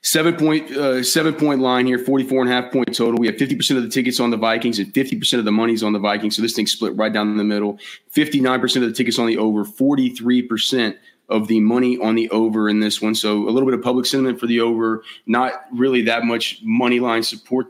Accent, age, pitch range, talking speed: American, 30-49, 110-130 Hz, 250 wpm